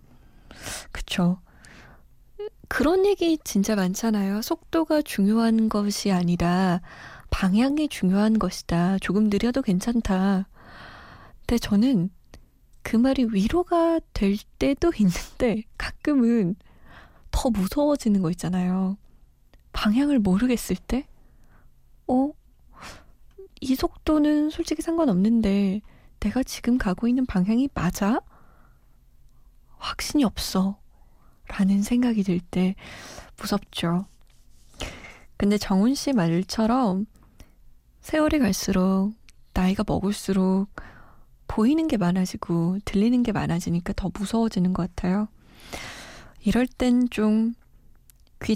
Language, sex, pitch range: Korean, female, 190-255 Hz